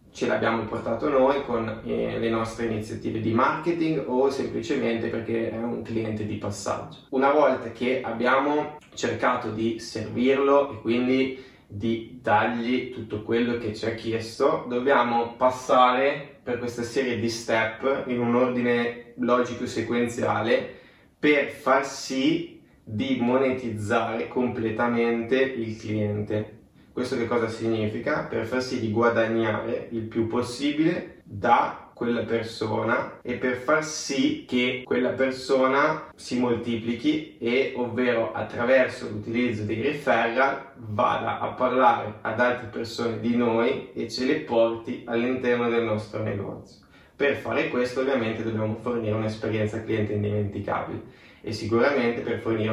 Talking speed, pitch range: 130 wpm, 115-130 Hz